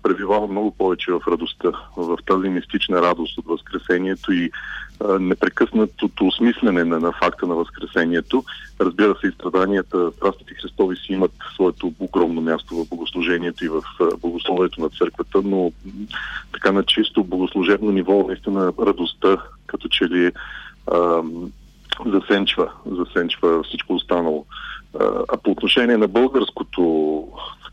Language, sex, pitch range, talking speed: Bulgarian, male, 85-100 Hz, 130 wpm